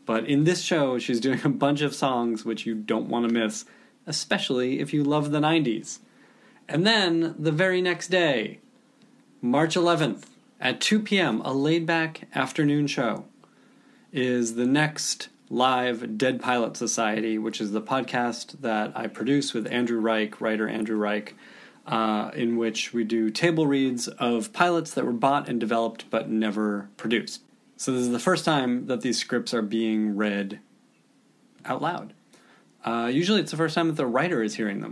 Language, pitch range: English, 115-155 Hz